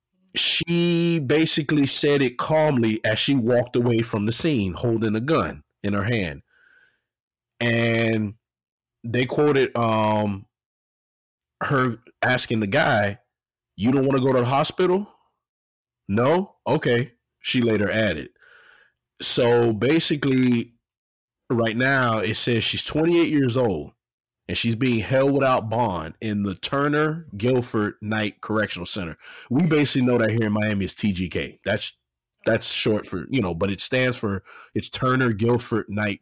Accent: American